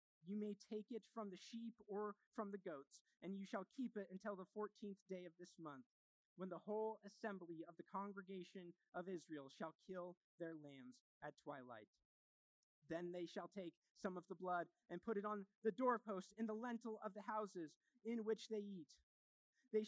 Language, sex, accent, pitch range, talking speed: English, male, American, 180-225 Hz, 190 wpm